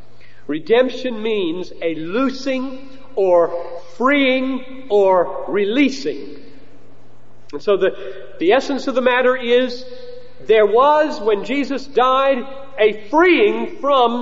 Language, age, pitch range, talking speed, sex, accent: English, 40-59, 225-305 Hz, 105 wpm, male, American